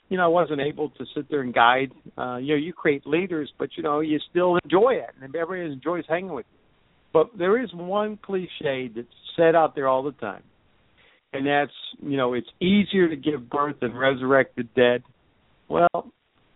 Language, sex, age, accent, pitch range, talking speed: English, male, 60-79, American, 135-175 Hz, 200 wpm